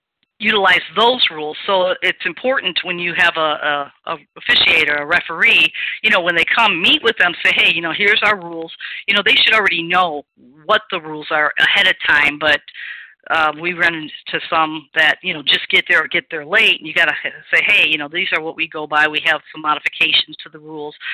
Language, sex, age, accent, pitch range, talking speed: English, female, 40-59, American, 155-200 Hz, 225 wpm